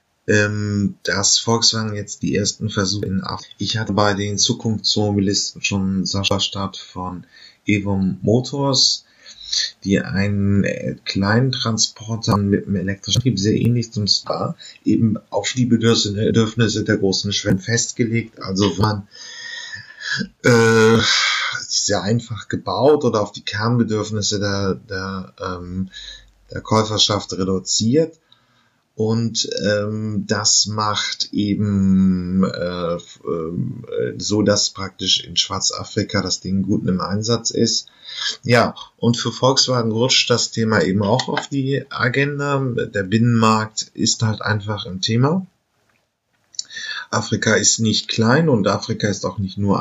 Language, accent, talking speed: German, German, 125 wpm